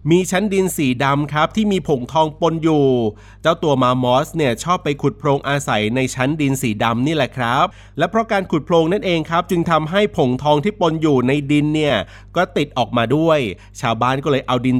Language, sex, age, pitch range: Thai, male, 30-49, 125-165 Hz